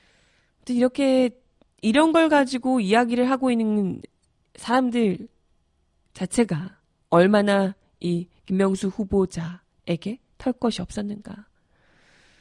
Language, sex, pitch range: Korean, female, 195-265 Hz